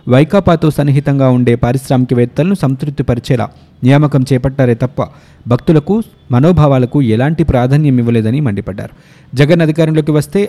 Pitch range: 125-155 Hz